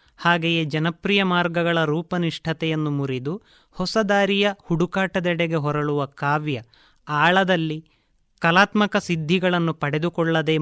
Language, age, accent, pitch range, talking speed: Kannada, 30-49, native, 150-185 Hz, 75 wpm